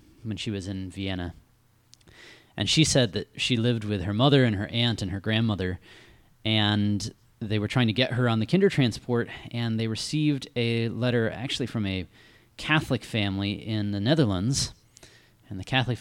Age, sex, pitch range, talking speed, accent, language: 20-39, male, 95-120 Hz, 175 wpm, American, English